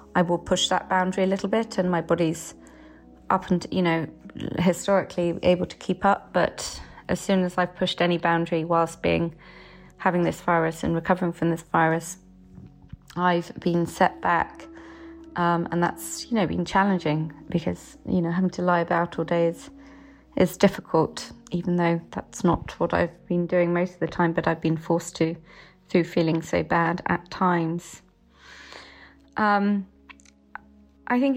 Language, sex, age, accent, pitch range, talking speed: English, female, 30-49, British, 165-195 Hz, 165 wpm